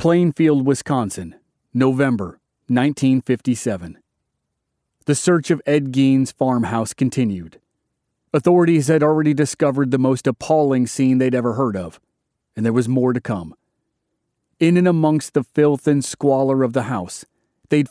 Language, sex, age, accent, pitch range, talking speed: English, male, 30-49, American, 115-150 Hz, 135 wpm